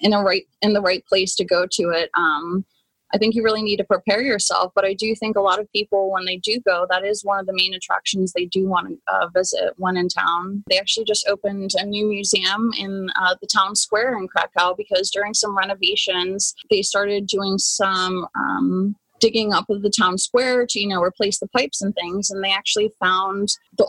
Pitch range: 185-215 Hz